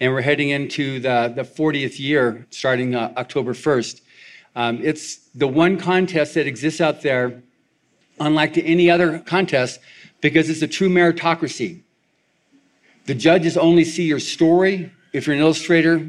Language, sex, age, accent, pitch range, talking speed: English, male, 50-69, American, 130-165 Hz, 150 wpm